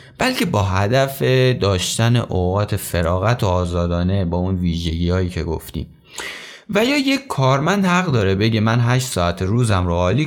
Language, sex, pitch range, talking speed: Persian, male, 90-135 Hz, 160 wpm